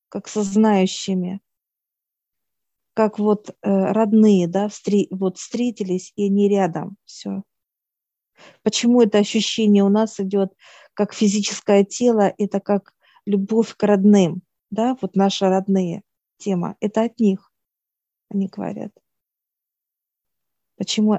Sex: female